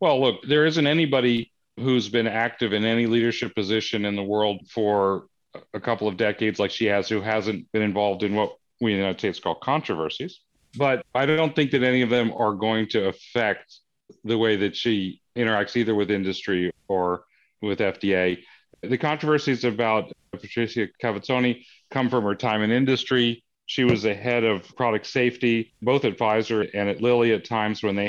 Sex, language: male, English